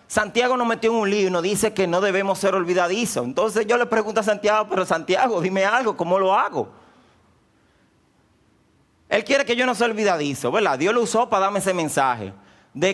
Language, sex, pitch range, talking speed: Spanish, male, 130-200 Hz, 195 wpm